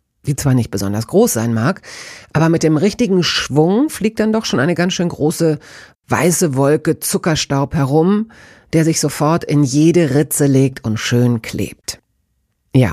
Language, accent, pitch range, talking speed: German, German, 130-175 Hz, 160 wpm